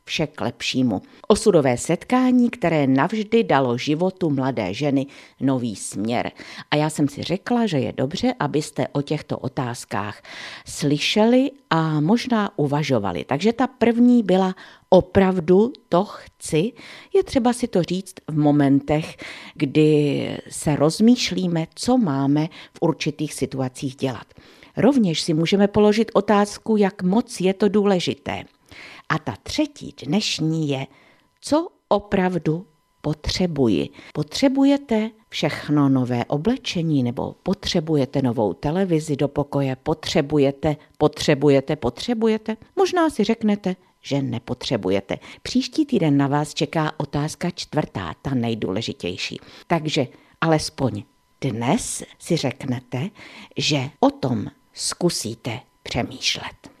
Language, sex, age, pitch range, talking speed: Czech, female, 50-69, 140-205 Hz, 115 wpm